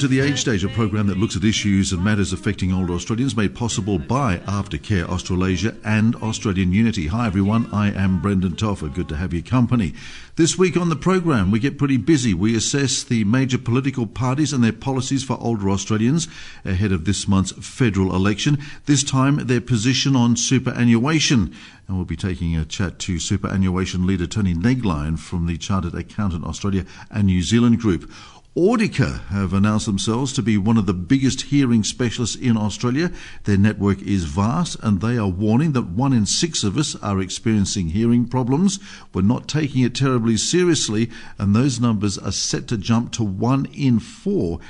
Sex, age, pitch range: male, 50-69, 95-130 Hz